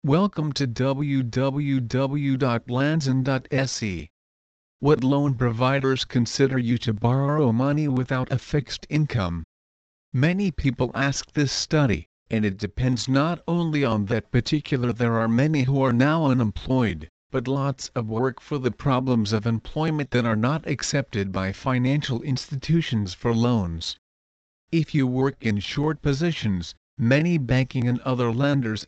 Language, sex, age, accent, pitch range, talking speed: English, male, 50-69, American, 115-140 Hz, 135 wpm